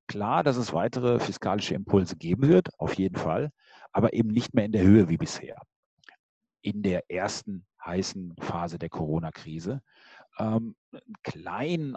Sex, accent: male, German